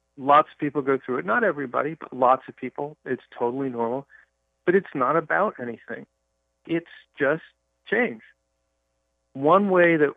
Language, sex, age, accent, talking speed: English, male, 40-59, American, 155 wpm